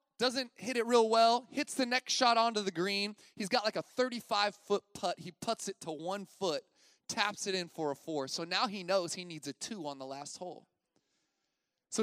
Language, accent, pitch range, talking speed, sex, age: English, American, 195-280 Hz, 215 wpm, male, 30-49